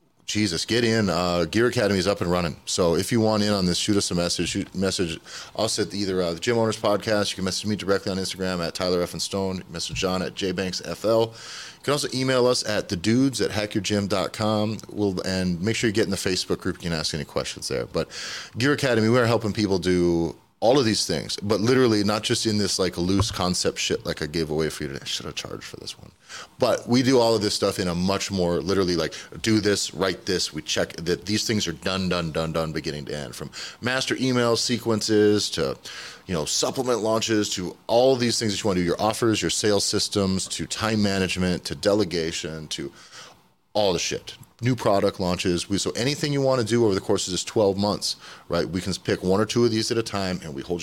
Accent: American